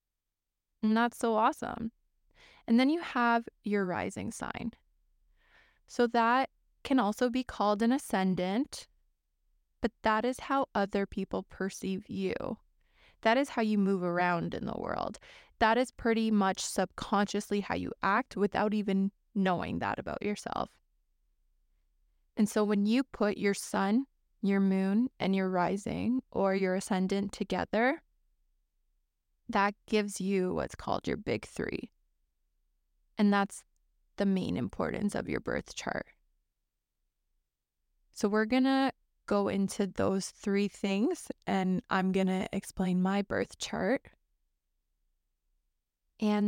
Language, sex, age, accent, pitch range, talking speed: English, female, 20-39, American, 185-230 Hz, 130 wpm